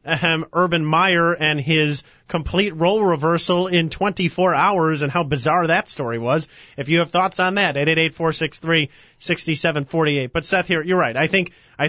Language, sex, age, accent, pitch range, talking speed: English, male, 30-49, American, 155-180 Hz, 210 wpm